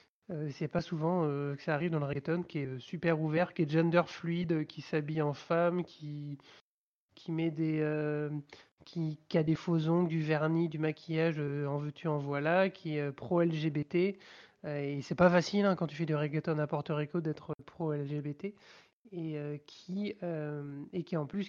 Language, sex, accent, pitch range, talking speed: French, male, French, 150-175 Hz, 200 wpm